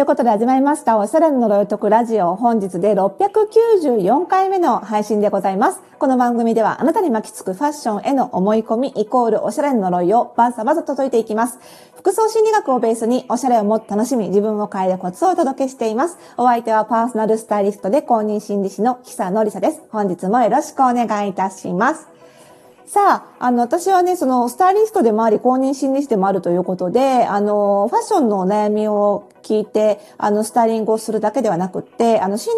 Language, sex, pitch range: Japanese, female, 200-260 Hz